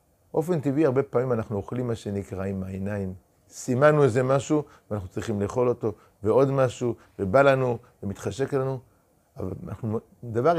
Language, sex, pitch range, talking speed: Hebrew, male, 105-140 Hz, 145 wpm